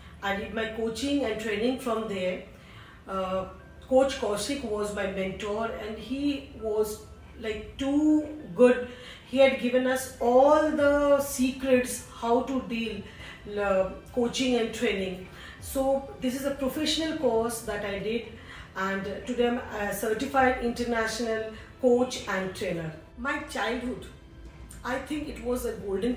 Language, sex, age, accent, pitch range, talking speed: Hindi, female, 40-59, native, 215-265 Hz, 140 wpm